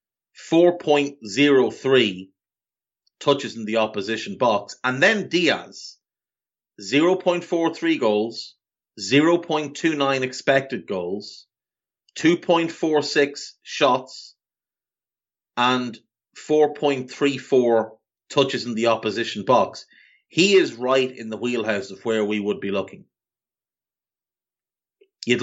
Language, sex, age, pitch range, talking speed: English, male, 30-49, 110-140 Hz, 85 wpm